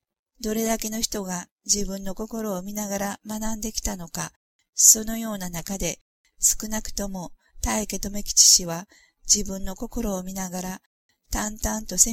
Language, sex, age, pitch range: Japanese, female, 50-69, 185-220 Hz